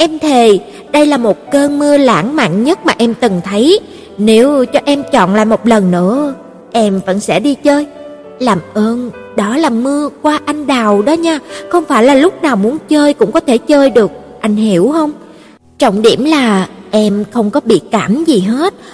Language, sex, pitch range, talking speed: Vietnamese, female, 215-295 Hz, 195 wpm